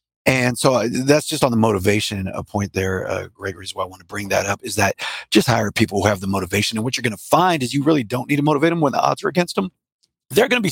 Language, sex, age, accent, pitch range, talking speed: English, male, 40-59, American, 105-135 Hz, 270 wpm